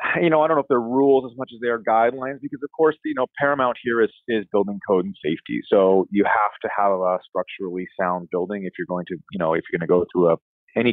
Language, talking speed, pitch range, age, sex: English, 275 wpm, 90-105 Hz, 30-49, male